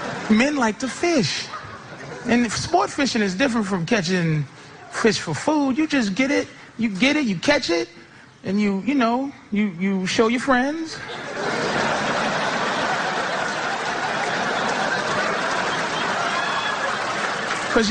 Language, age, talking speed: English, 30-49, 115 wpm